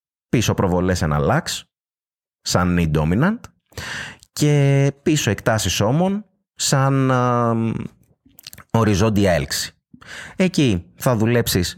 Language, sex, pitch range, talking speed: Greek, male, 95-130 Hz, 85 wpm